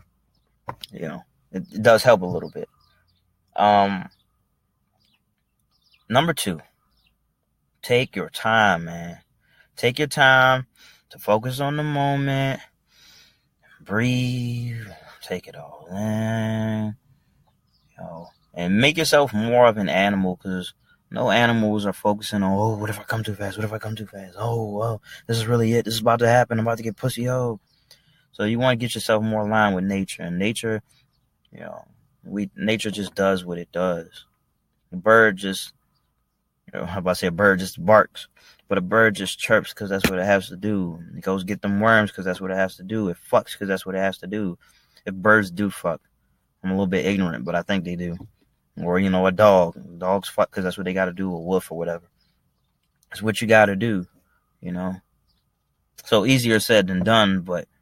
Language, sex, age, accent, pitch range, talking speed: English, male, 20-39, American, 95-115 Hz, 190 wpm